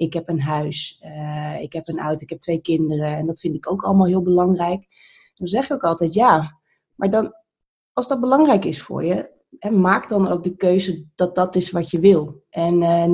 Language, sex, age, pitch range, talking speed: Dutch, female, 30-49, 160-195 Hz, 220 wpm